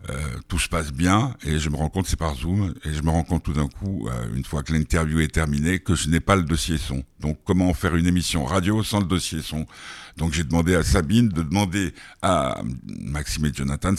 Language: French